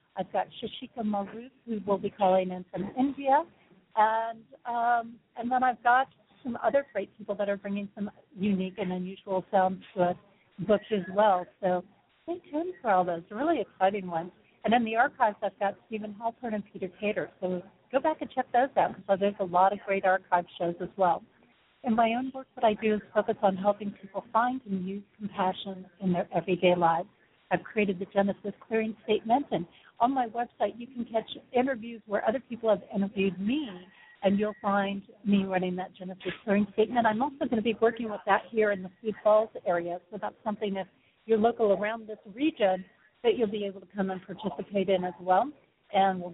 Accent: American